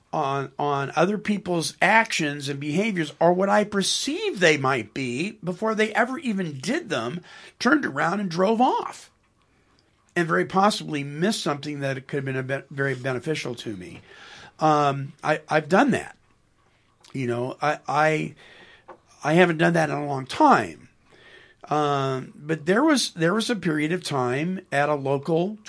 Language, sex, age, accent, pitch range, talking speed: English, male, 50-69, American, 135-170 Hz, 160 wpm